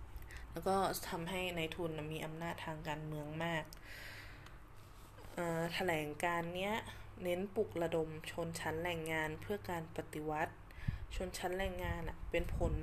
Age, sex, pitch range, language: 20-39, female, 110-180 Hz, Thai